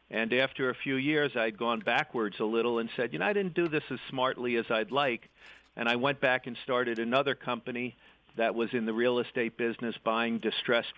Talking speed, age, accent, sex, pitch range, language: 220 wpm, 50-69, American, male, 115-130 Hz, English